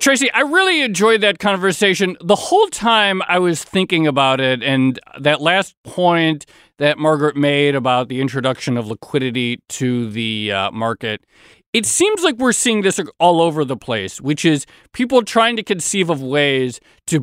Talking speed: 170 wpm